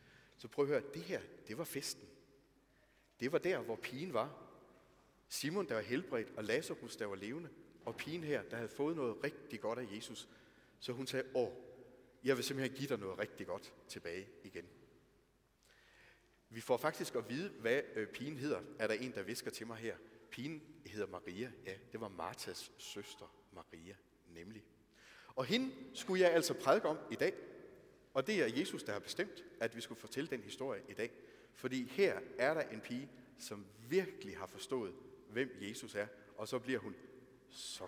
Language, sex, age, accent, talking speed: Danish, male, 30-49, native, 185 wpm